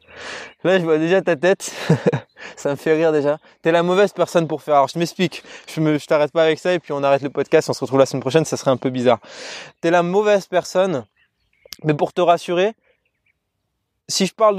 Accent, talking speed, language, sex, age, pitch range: French, 235 wpm, French, male, 20-39, 145-185 Hz